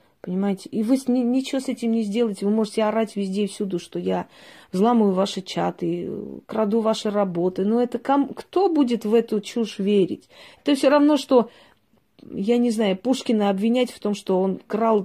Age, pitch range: 30-49, 200-245 Hz